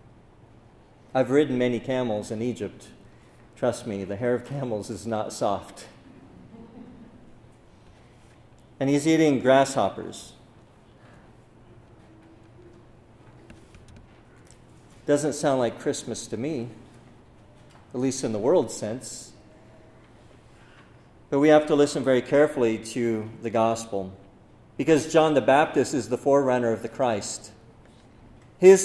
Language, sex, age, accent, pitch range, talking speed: English, male, 50-69, American, 115-160 Hz, 110 wpm